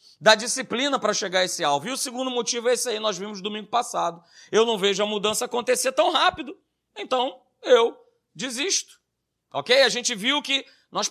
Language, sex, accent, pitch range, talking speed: Portuguese, male, Brazilian, 190-255 Hz, 190 wpm